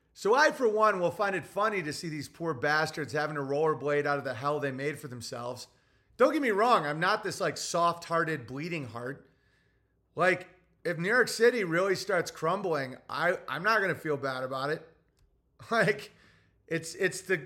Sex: male